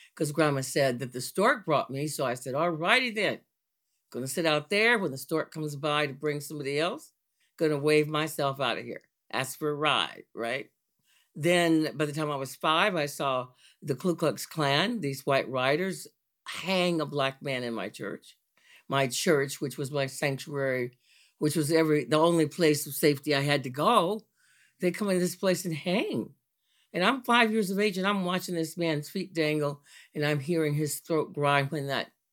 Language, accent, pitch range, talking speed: English, American, 140-175 Hz, 200 wpm